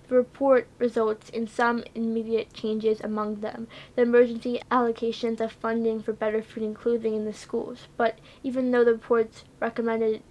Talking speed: 165 wpm